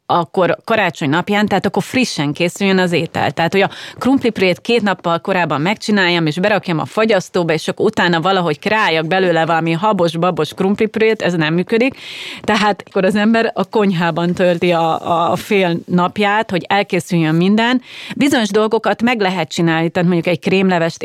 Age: 30-49